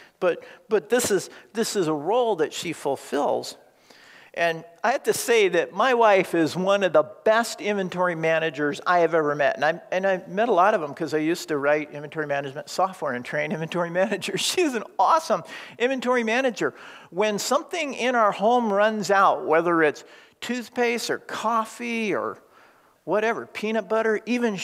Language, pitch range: English, 185-250 Hz